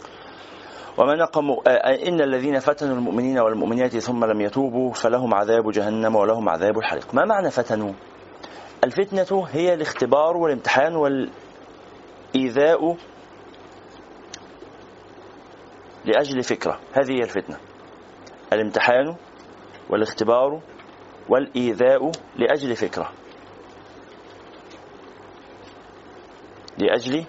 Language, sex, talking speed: Arabic, male, 75 wpm